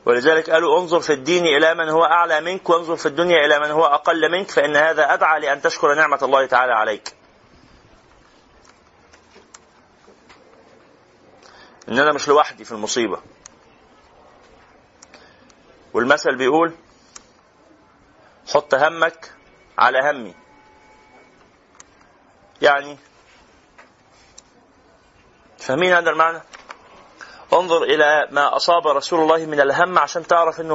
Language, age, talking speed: Arabic, 30-49, 105 wpm